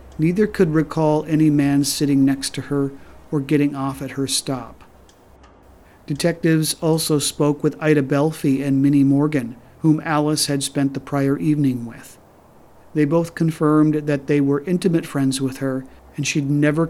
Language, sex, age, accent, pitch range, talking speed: English, male, 50-69, American, 130-150 Hz, 160 wpm